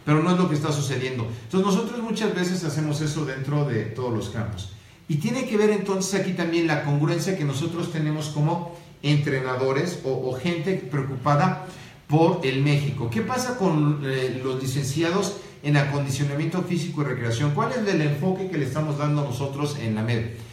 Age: 50-69